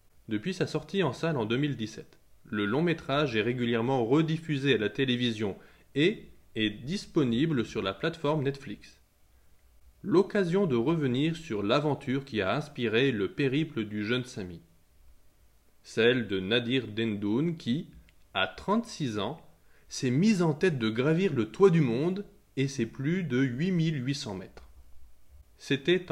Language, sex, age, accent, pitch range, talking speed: French, male, 20-39, French, 100-155 Hz, 140 wpm